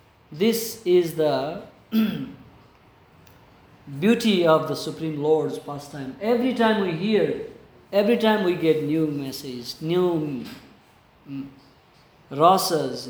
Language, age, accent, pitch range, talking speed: English, 50-69, Indian, 150-190 Hz, 100 wpm